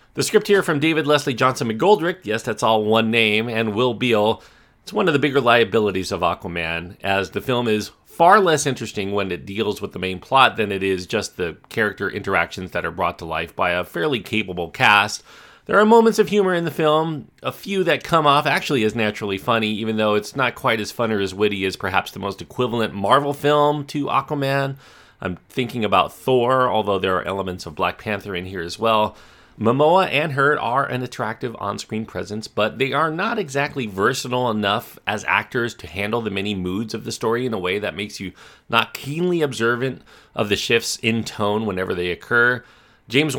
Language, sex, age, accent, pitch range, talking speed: English, male, 30-49, American, 100-135 Hz, 205 wpm